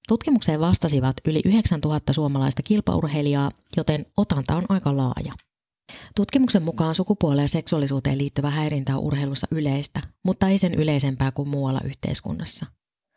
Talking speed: 130 wpm